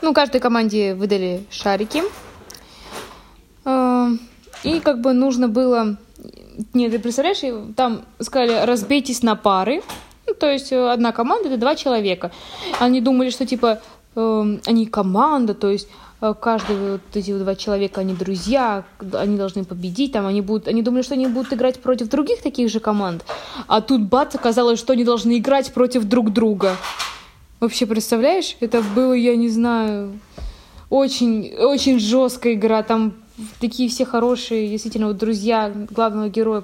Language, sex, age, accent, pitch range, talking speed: Russian, female, 20-39, native, 205-245 Hz, 140 wpm